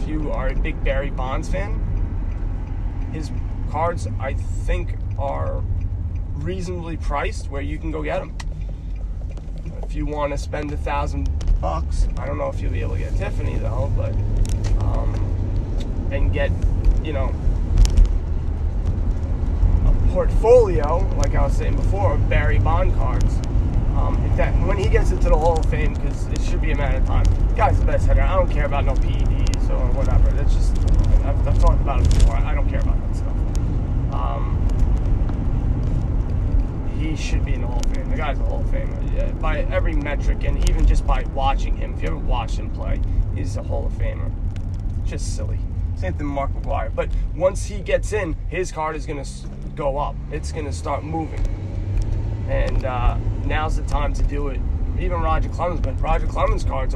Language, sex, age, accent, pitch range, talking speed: English, male, 20-39, American, 85-100 Hz, 185 wpm